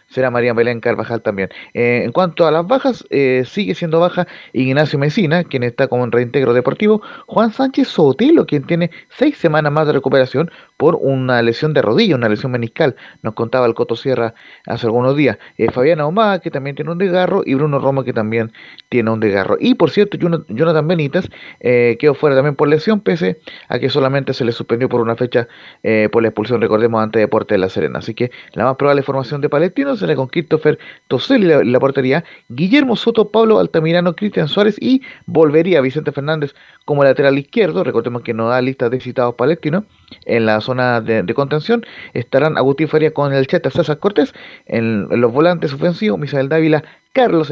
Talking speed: 195 wpm